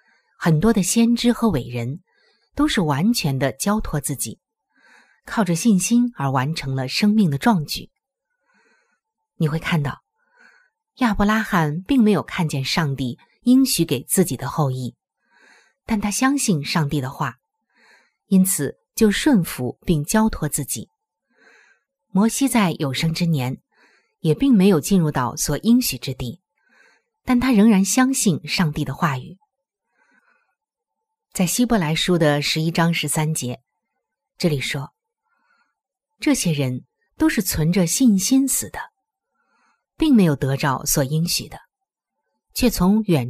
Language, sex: Chinese, female